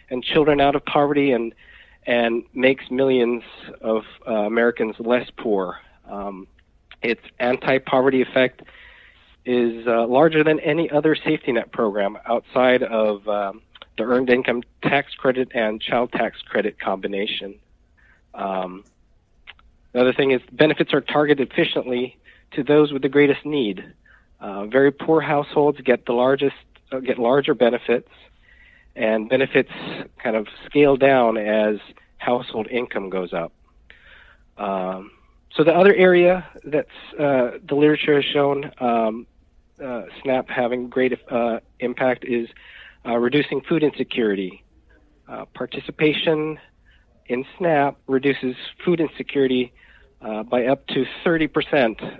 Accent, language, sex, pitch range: American, English, male, 110-140 Hz